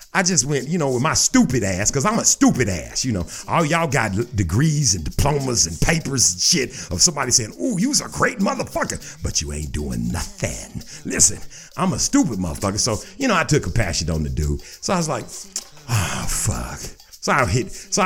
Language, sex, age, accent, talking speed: English, male, 50-69, American, 215 wpm